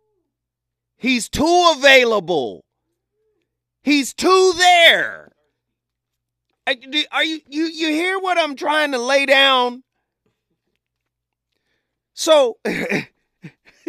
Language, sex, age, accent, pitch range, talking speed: English, male, 40-59, American, 175-290 Hz, 85 wpm